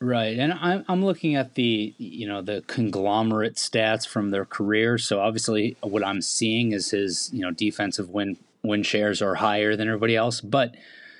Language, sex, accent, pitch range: English, male, American, 110-140 Hz